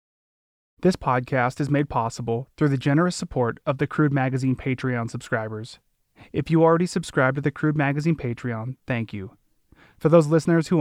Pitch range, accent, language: 120-155 Hz, American, English